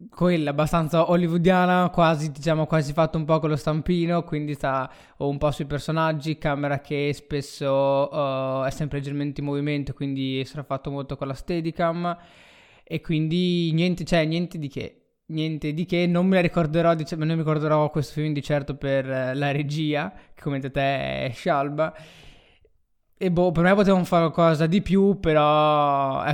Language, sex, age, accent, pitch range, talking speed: Italian, male, 20-39, native, 140-160 Hz, 175 wpm